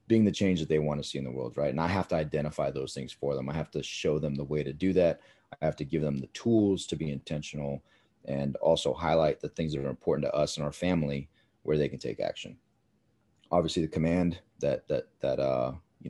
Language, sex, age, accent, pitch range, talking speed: English, male, 30-49, American, 75-90 Hz, 250 wpm